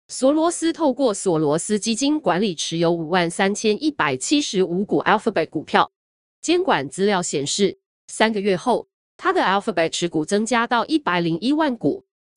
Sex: female